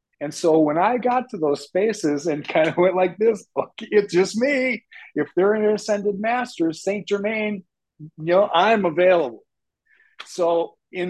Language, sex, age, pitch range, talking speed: English, male, 40-59, 145-180 Hz, 170 wpm